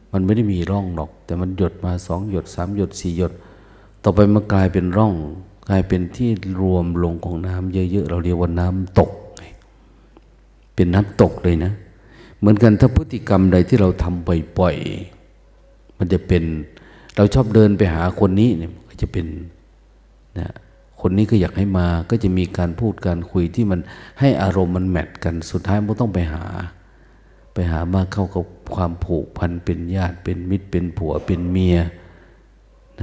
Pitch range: 85-100 Hz